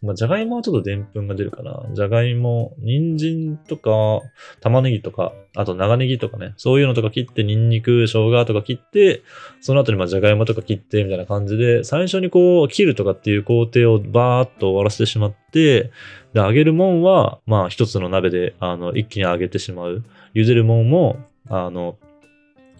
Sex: male